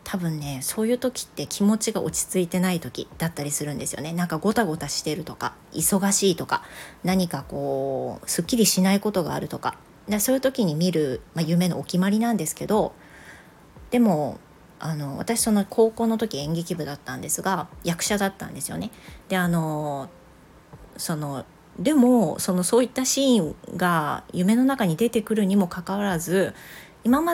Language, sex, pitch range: Japanese, female, 160-220 Hz